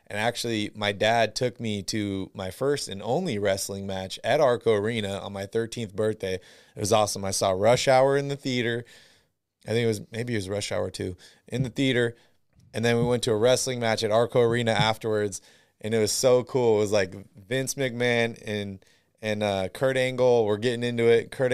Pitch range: 100-120 Hz